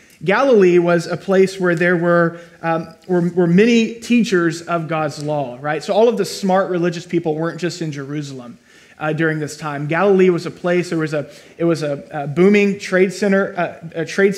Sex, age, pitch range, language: male, 30-49, 165-200 Hz, English